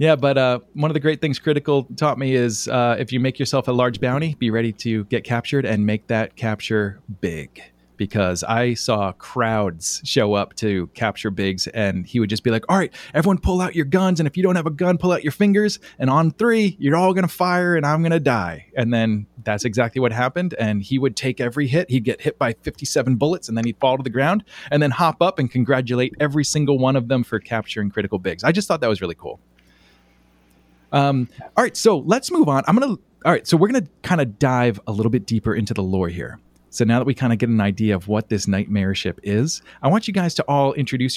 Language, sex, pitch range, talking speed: English, male, 105-150 Hz, 250 wpm